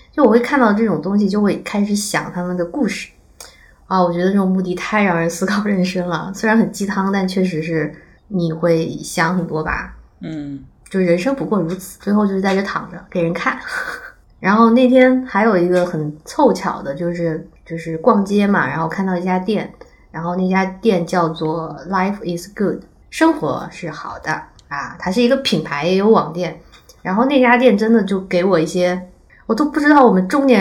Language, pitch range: Chinese, 180-240 Hz